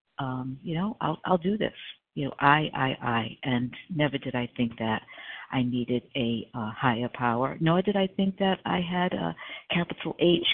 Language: English